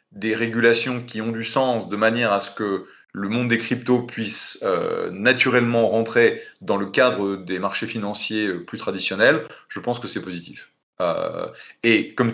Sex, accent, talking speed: male, French, 170 wpm